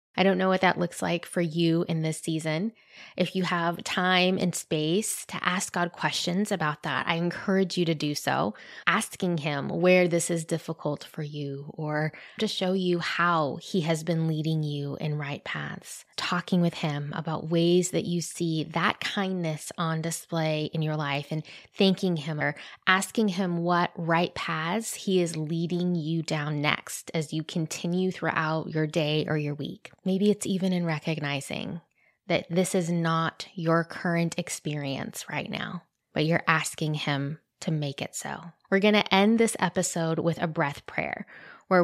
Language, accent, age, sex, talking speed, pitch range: English, American, 20-39, female, 175 wpm, 160-195 Hz